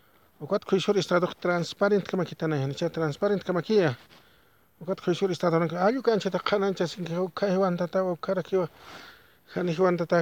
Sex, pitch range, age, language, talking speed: male, 170-220 Hz, 50-69, English, 70 wpm